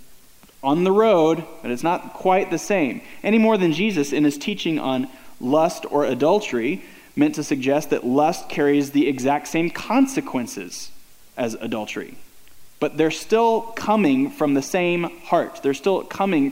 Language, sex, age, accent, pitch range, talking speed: English, male, 20-39, American, 140-210 Hz, 155 wpm